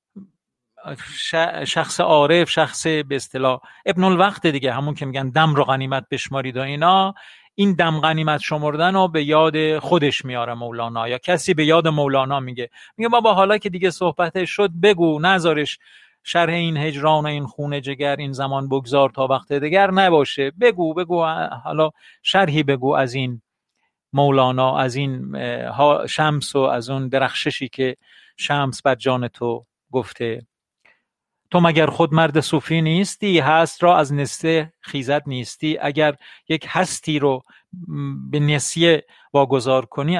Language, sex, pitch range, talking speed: Persian, male, 130-165 Hz, 145 wpm